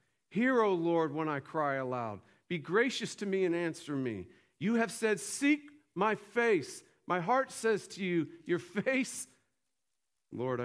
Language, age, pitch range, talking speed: English, 50-69, 120-155 Hz, 160 wpm